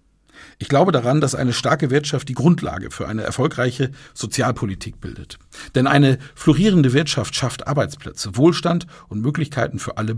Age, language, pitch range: 50-69, German, 95-135 Hz